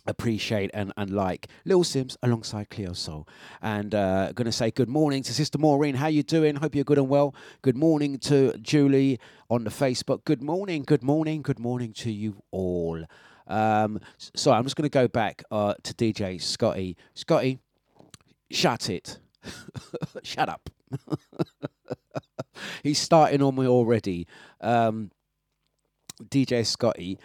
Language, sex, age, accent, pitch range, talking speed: English, male, 30-49, British, 100-135 Hz, 150 wpm